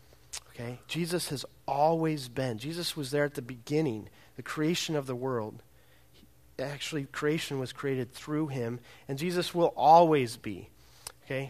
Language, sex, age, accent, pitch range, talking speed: English, male, 40-59, American, 110-150 Hz, 150 wpm